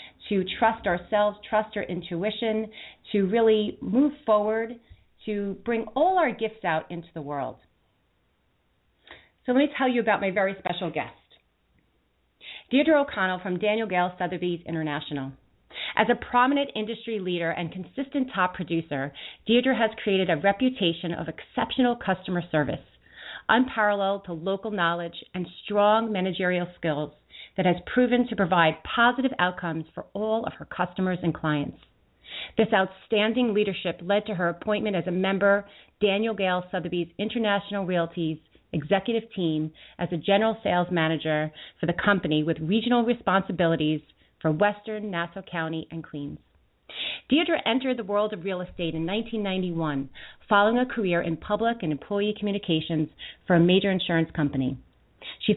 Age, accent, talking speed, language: 40-59, American, 145 wpm, English